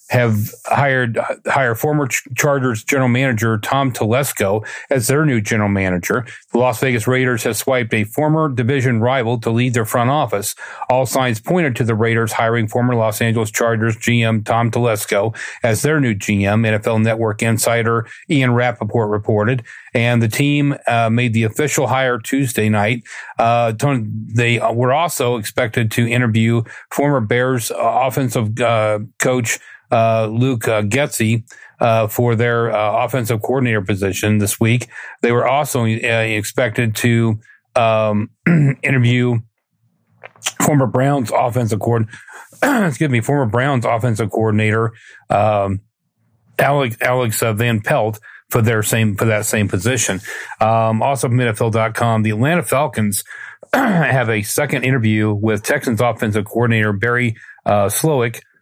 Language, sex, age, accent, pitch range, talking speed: English, male, 40-59, American, 110-130 Hz, 140 wpm